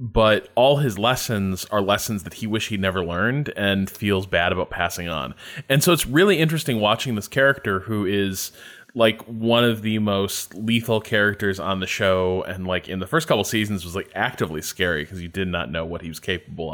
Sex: male